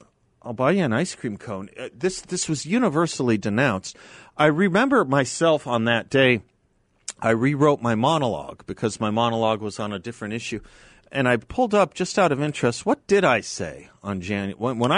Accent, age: American, 40-59